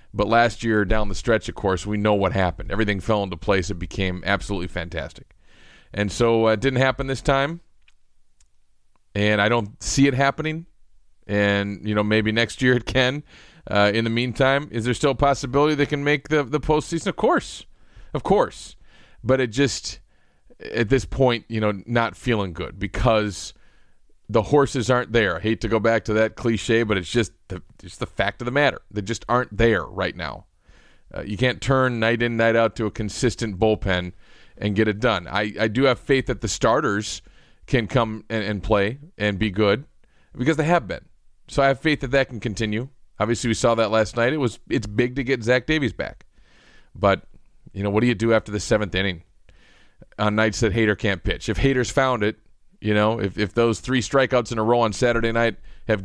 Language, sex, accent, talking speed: English, male, American, 210 wpm